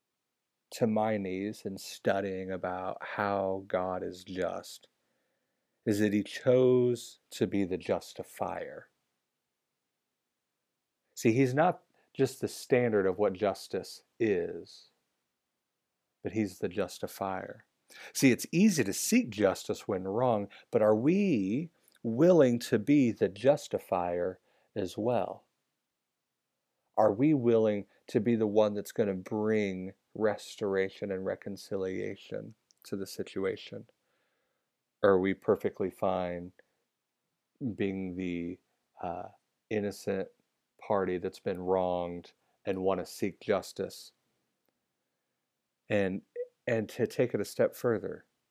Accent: American